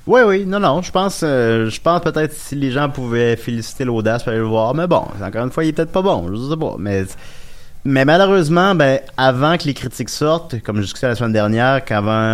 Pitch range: 95-125 Hz